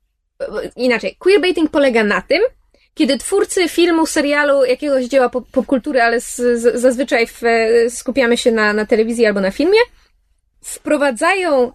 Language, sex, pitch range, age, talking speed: Polish, female, 240-315 Hz, 20-39, 115 wpm